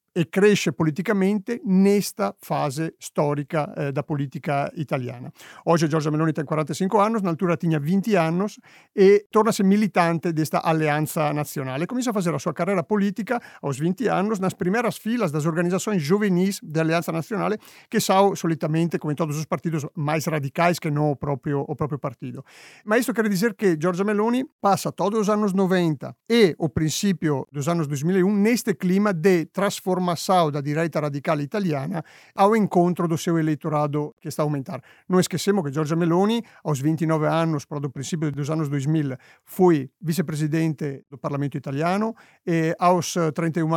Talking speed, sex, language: 165 wpm, male, Portuguese